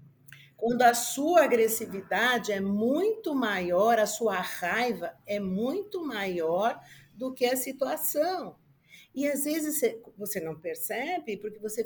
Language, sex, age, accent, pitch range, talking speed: Portuguese, female, 50-69, Brazilian, 215-285 Hz, 125 wpm